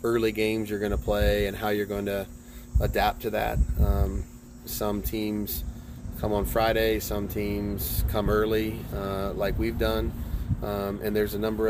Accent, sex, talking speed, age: American, male, 170 wpm, 20-39